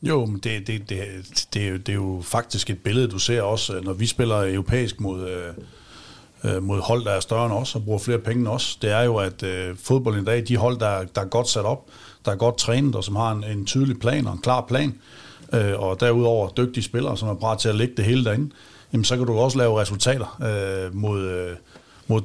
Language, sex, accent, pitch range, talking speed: Danish, male, native, 100-125 Hz, 240 wpm